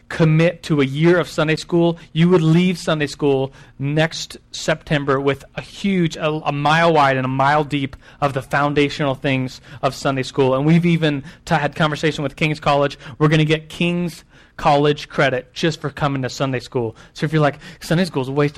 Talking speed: 200 wpm